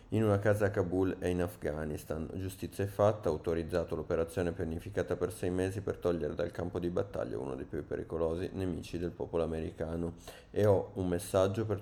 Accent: native